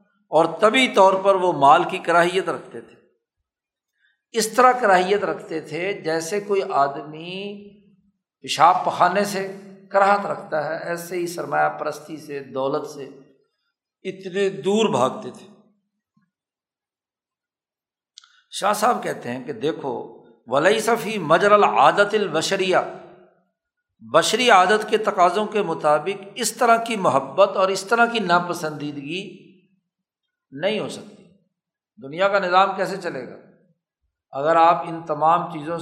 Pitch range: 160-205 Hz